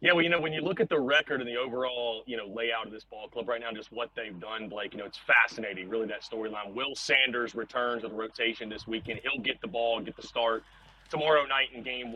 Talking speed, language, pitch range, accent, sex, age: 260 wpm, English, 115-140 Hz, American, male, 30-49